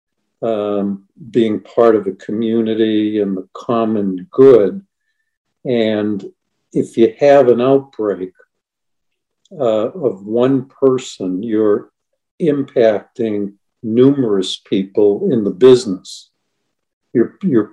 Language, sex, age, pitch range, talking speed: English, male, 60-79, 110-130 Hz, 100 wpm